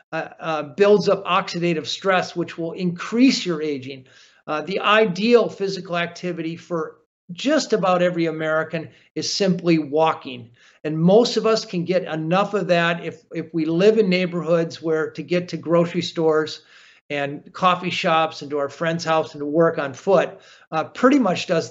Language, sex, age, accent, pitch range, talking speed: English, male, 50-69, American, 160-195 Hz, 170 wpm